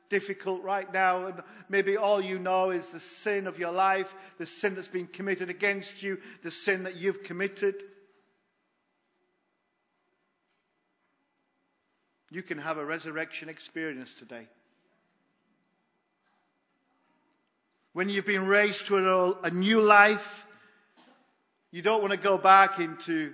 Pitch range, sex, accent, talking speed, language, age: 195-265 Hz, male, British, 125 wpm, English, 50-69